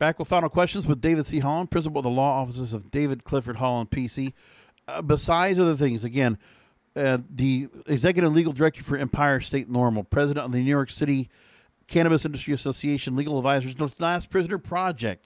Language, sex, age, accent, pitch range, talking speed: English, male, 50-69, American, 130-165 Hz, 185 wpm